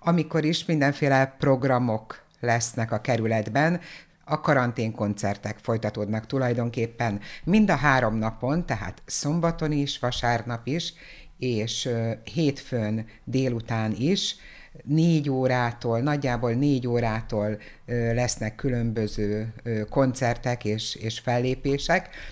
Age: 60-79